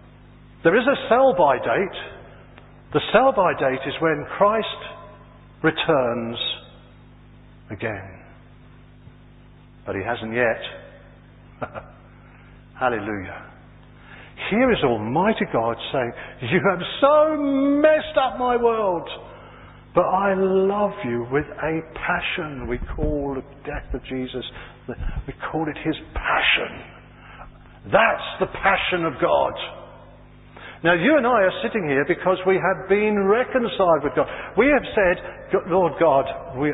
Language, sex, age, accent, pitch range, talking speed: English, male, 50-69, British, 120-175 Hz, 120 wpm